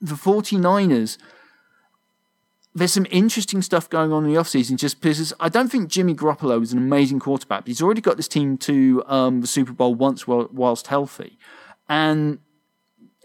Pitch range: 135-175 Hz